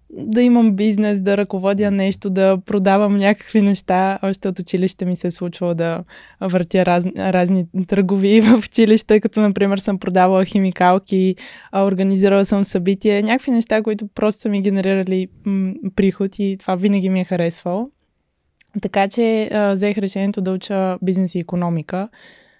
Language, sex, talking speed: Bulgarian, female, 145 wpm